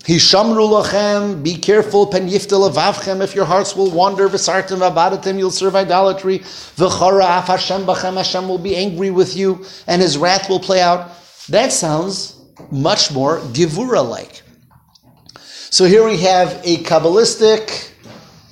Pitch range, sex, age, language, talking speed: 155-195 Hz, male, 50-69, English, 120 wpm